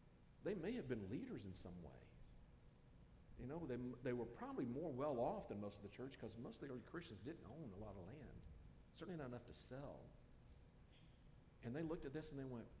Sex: male